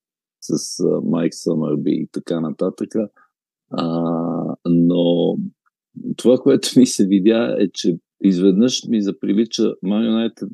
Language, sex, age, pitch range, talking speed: Bulgarian, male, 50-69, 90-110 Hz, 100 wpm